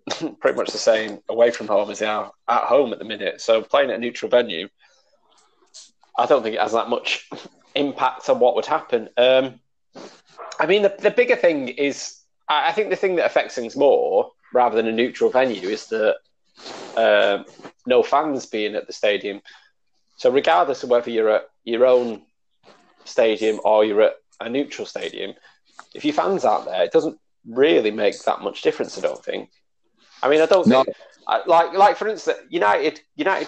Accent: British